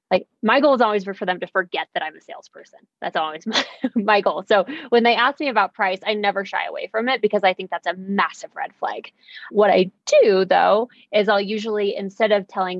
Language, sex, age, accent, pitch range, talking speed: English, female, 20-39, American, 185-225 Hz, 230 wpm